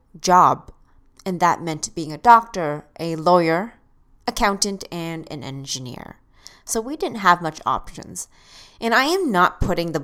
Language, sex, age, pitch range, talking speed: English, female, 30-49, 155-195 Hz, 150 wpm